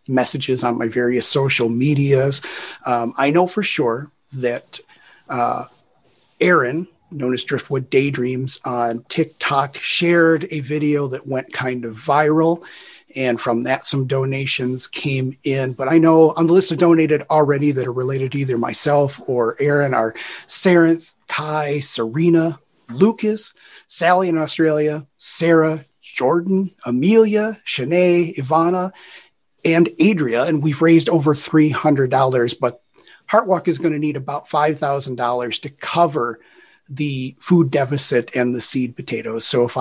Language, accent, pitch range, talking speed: English, American, 125-160 Hz, 135 wpm